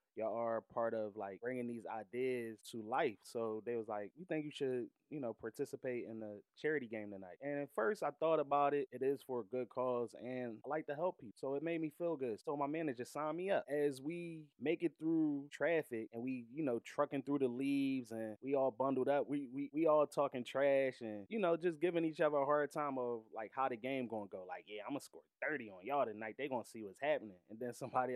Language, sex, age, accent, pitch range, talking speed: English, male, 20-39, American, 120-150 Hz, 250 wpm